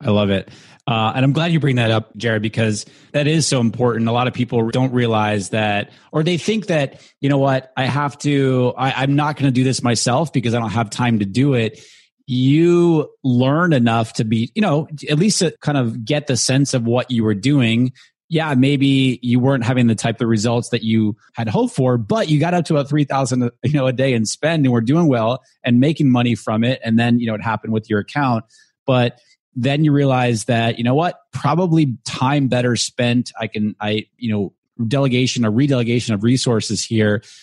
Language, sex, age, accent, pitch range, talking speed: English, male, 30-49, American, 110-135 Hz, 220 wpm